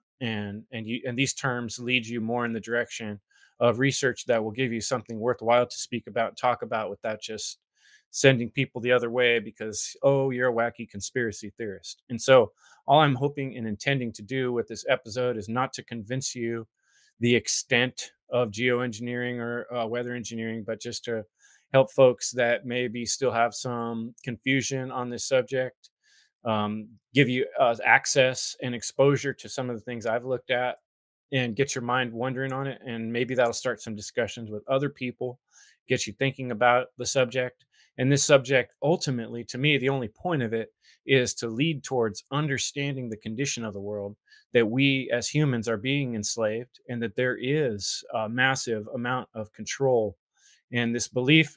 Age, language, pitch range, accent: 20-39, English, 115-130 Hz, American